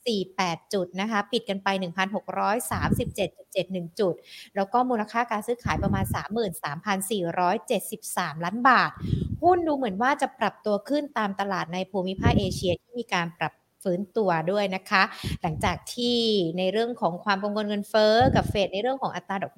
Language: Thai